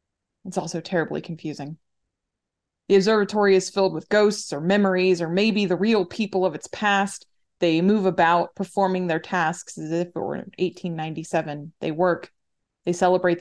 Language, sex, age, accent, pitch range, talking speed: English, female, 20-39, American, 170-195 Hz, 155 wpm